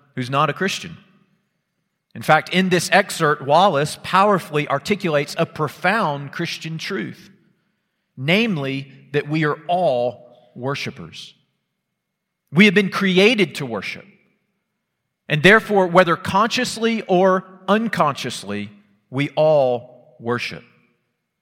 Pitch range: 155-205 Hz